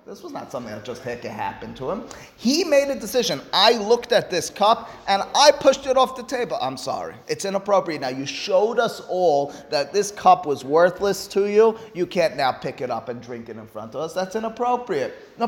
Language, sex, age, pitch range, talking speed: English, male, 30-49, 135-195 Hz, 225 wpm